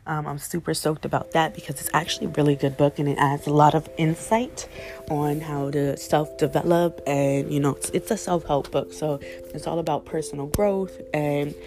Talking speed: 200 wpm